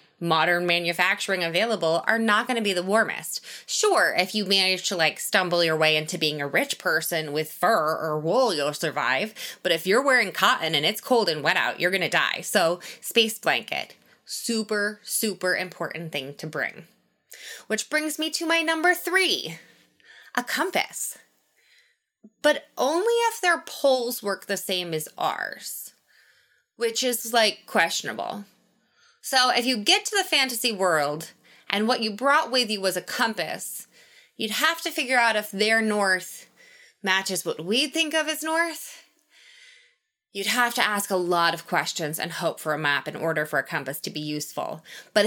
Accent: American